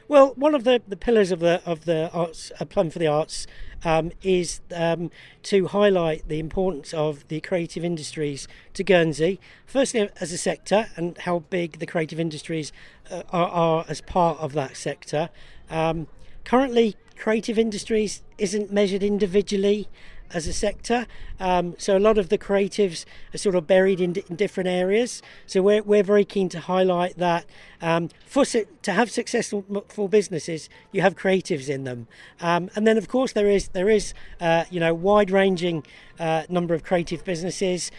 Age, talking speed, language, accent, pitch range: 40-59, 180 wpm, English, British, 165-205 Hz